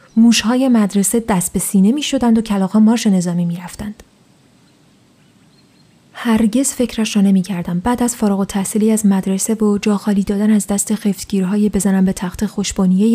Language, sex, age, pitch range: Persian, female, 30-49, 190-225 Hz